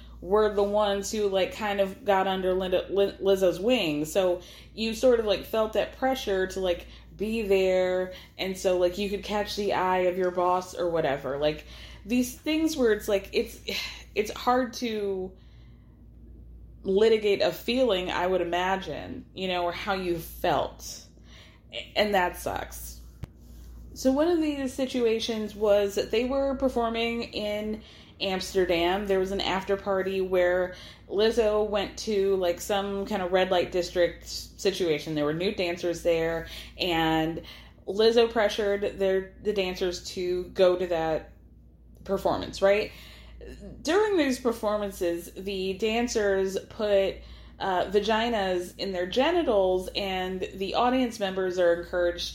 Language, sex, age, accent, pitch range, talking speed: English, female, 20-39, American, 180-215 Hz, 140 wpm